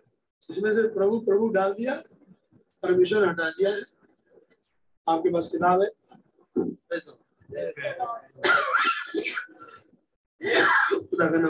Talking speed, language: 55 wpm, Hindi